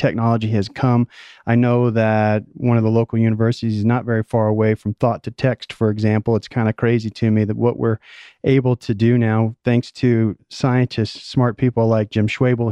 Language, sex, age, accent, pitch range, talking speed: English, male, 40-59, American, 115-125 Hz, 205 wpm